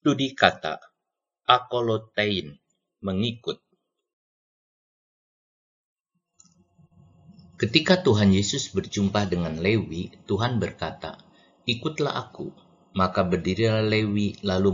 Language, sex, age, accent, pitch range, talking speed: Indonesian, male, 50-69, native, 95-125 Hz, 75 wpm